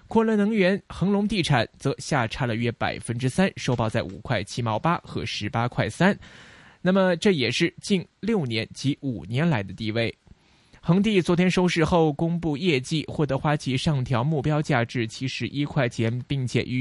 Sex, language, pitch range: male, Chinese, 115-165 Hz